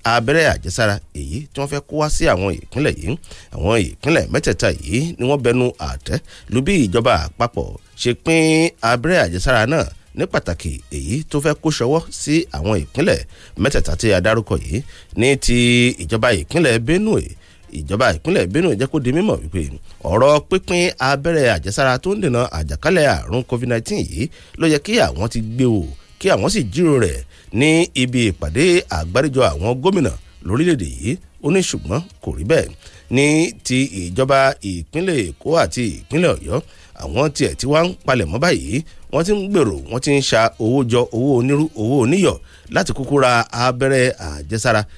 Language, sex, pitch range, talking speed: English, male, 95-145 Hz, 165 wpm